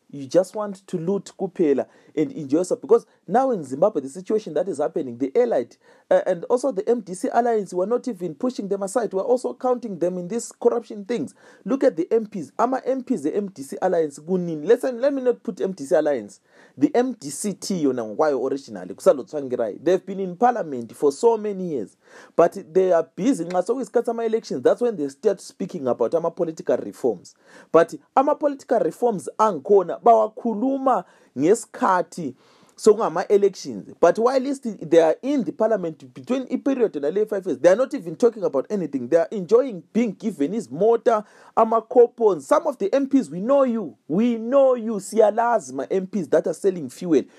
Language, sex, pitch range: English, male, 180-255 Hz